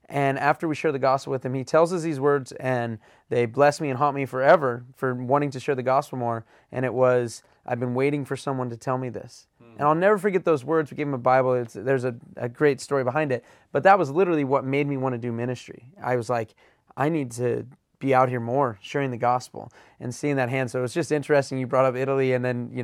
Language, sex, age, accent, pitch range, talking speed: English, male, 20-39, American, 130-150 Hz, 255 wpm